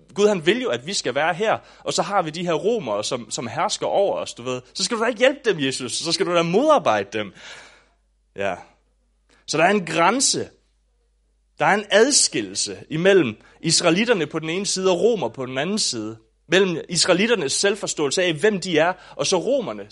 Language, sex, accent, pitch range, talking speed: English, male, Danish, 130-190 Hz, 210 wpm